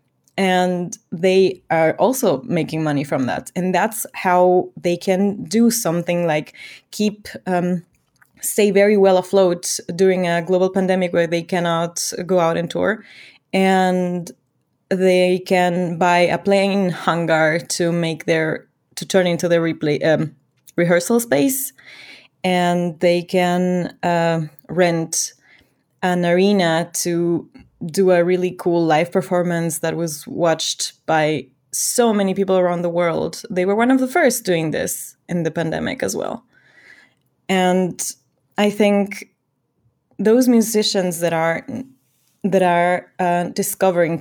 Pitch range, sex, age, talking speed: 170-195 Hz, female, 20-39, 135 wpm